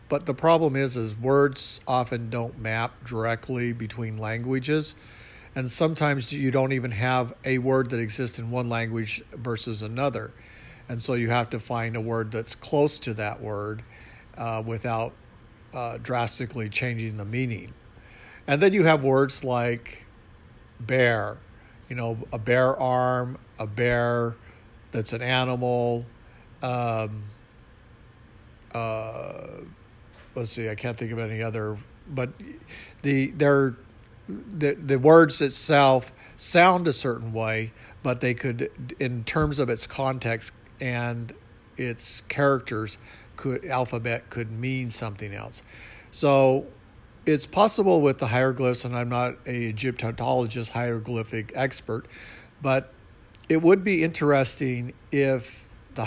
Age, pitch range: 50-69, 115-130 Hz